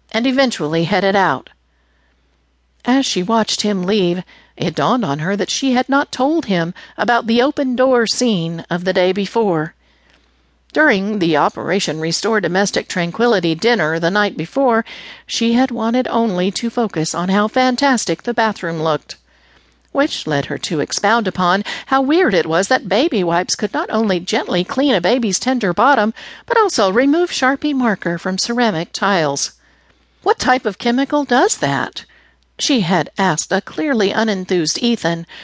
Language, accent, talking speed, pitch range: English, American, 155 wpm, 170-245 Hz